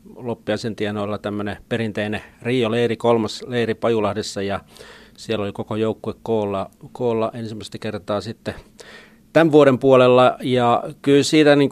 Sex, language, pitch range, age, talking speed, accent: male, Finnish, 110-125 Hz, 40-59, 125 wpm, native